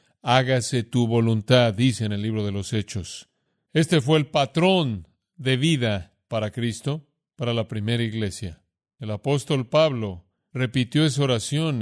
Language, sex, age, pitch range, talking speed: Spanish, male, 40-59, 115-155 Hz, 140 wpm